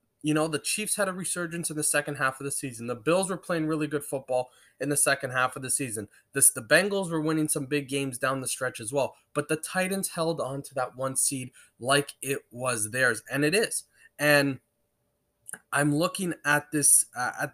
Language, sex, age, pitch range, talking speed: English, male, 20-39, 135-160 Hz, 220 wpm